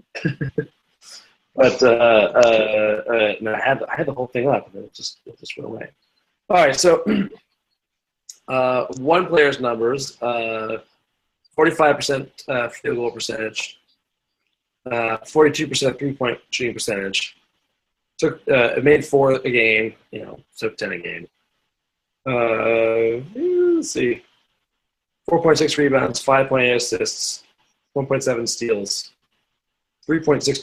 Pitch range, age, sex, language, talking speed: 115-145 Hz, 20-39, male, English, 120 wpm